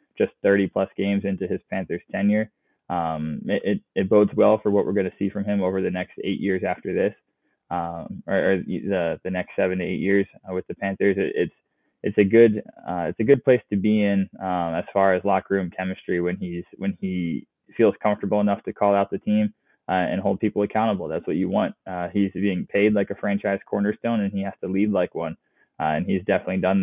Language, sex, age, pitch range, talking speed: English, male, 20-39, 95-105 Hz, 230 wpm